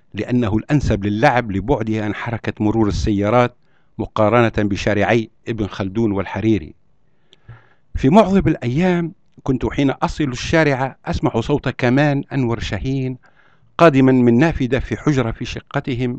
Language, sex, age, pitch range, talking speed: Arabic, male, 60-79, 110-140 Hz, 120 wpm